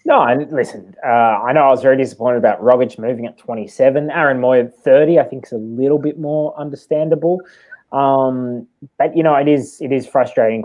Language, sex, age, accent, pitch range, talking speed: English, male, 20-39, Australian, 115-160 Hz, 195 wpm